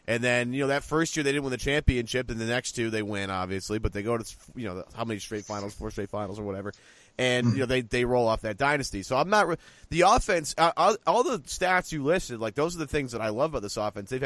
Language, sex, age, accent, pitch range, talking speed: English, male, 30-49, American, 105-140 Hz, 280 wpm